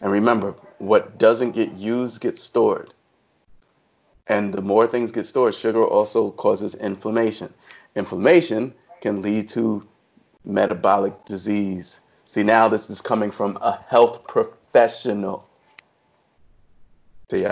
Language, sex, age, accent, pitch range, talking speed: English, male, 30-49, American, 100-135 Hz, 115 wpm